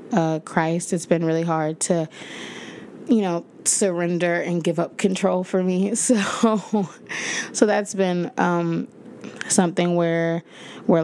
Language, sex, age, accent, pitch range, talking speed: English, female, 20-39, American, 165-200 Hz, 130 wpm